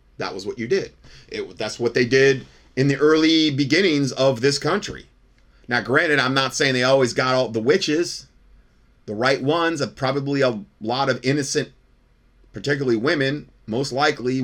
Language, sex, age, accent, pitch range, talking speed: English, male, 30-49, American, 110-140 Hz, 165 wpm